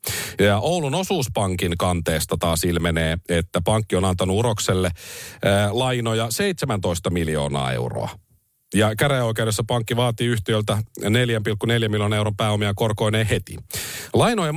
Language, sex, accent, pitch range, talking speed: Finnish, male, native, 95-135 Hz, 115 wpm